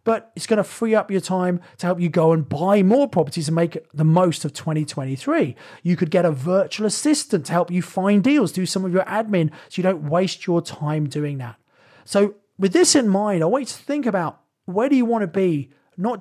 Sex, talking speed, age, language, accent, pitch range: male, 235 wpm, 30-49, English, British, 160-200 Hz